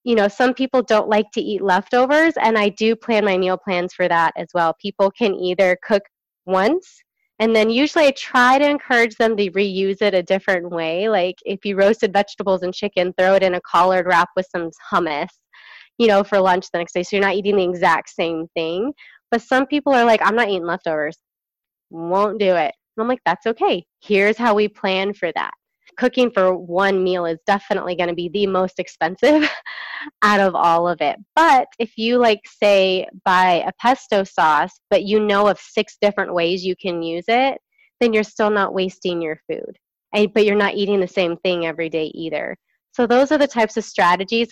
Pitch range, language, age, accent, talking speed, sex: 180-230 Hz, English, 20-39, American, 210 wpm, female